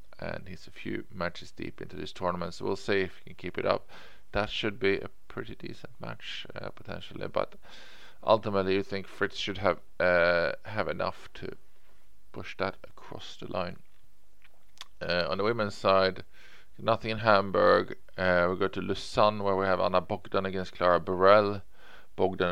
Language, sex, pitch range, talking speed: English, male, 95-110 Hz, 175 wpm